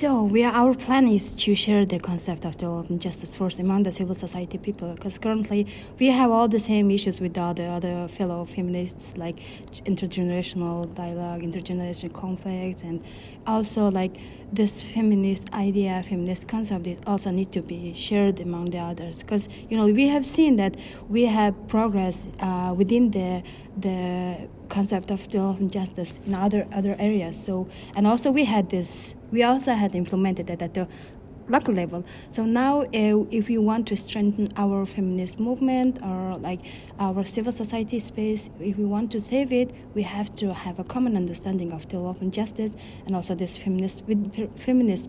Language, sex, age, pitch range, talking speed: English, female, 30-49, 180-220 Hz, 175 wpm